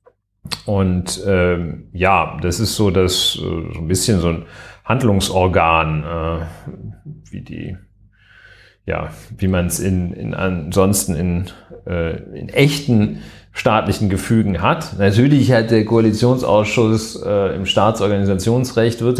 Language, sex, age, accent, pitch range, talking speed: German, male, 40-59, German, 95-115 Hz, 120 wpm